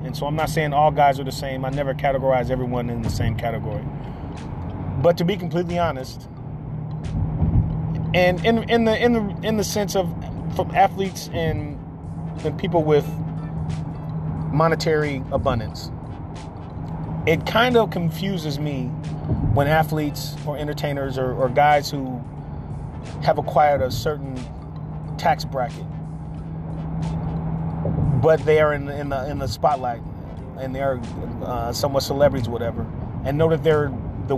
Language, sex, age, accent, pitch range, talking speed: English, male, 30-49, American, 125-155 Hz, 140 wpm